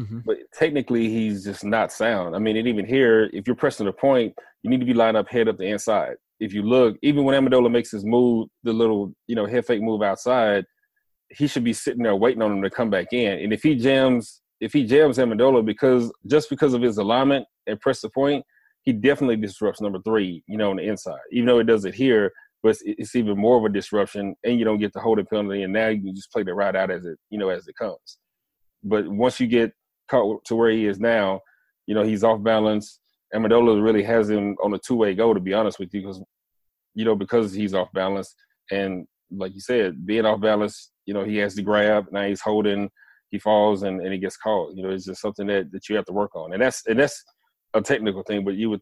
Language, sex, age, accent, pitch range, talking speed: English, male, 30-49, American, 100-120 Hz, 245 wpm